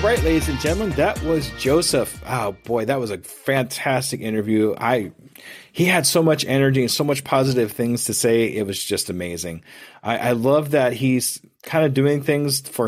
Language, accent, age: English, American, 30-49